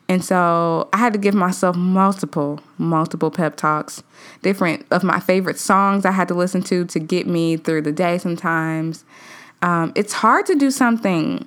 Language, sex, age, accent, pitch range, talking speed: English, female, 20-39, American, 170-225 Hz, 180 wpm